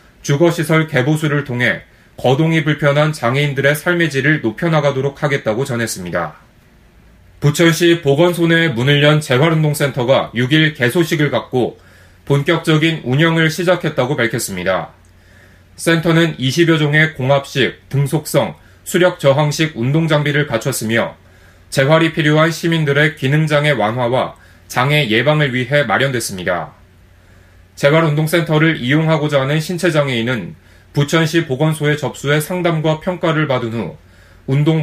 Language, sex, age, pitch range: Korean, male, 30-49, 120-160 Hz